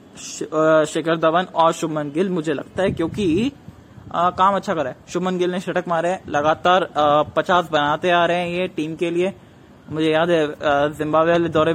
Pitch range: 155-185 Hz